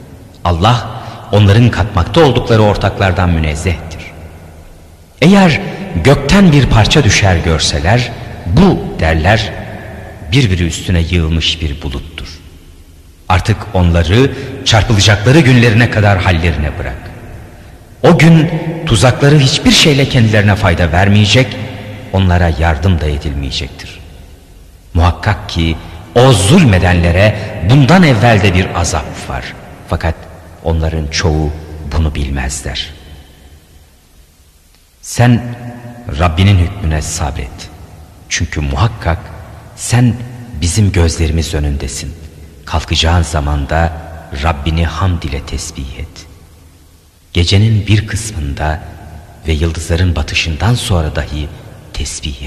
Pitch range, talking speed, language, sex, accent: 80-110 Hz, 90 wpm, Turkish, male, native